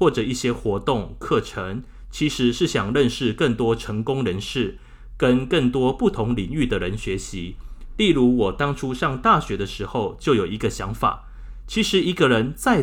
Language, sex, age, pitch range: Chinese, male, 30-49, 100-140 Hz